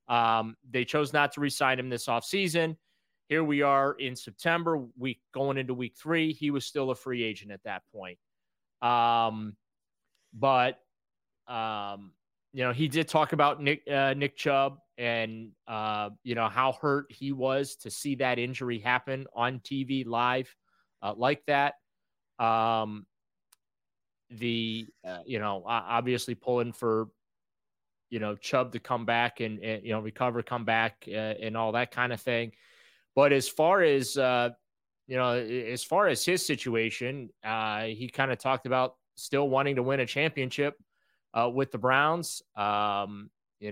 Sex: male